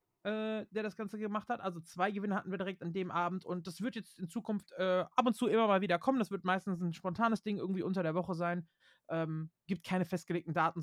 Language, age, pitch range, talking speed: German, 30-49, 165-215 Hz, 245 wpm